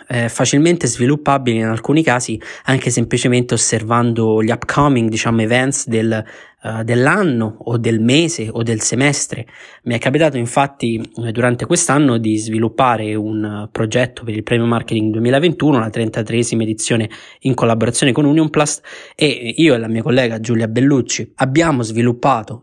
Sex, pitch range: male, 115-135 Hz